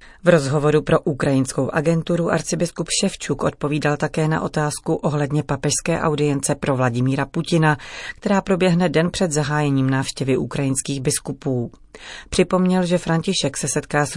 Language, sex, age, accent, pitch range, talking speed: Czech, female, 30-49, native, 140-165 Hz, 130 wpm